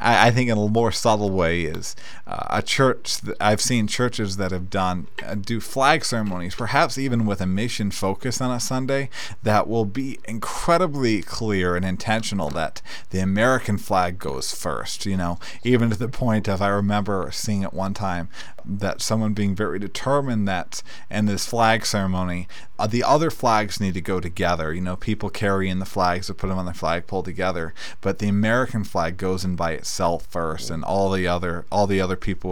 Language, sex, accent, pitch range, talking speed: English, male, American, 90-115 Hz, 195 wpm